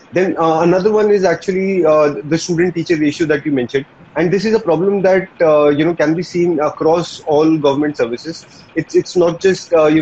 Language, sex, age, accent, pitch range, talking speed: English, male, 30-49, Indian, 145-170 Hz, 215 wpm